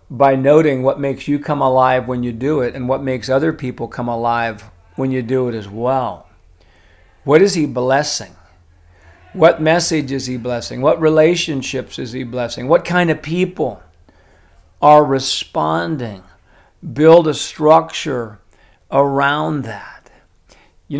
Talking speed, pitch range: 145 wpm, 120-145 Hz